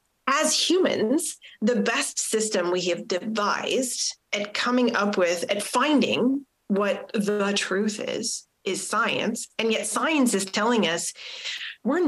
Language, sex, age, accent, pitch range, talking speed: English, female, 30-49, American, 190-255 Hz, 135 wpm